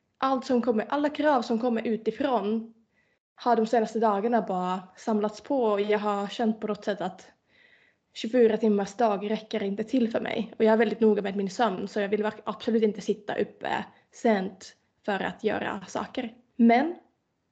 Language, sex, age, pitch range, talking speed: Swedish, female, 20-39, 210-245 Hz, 175 wpm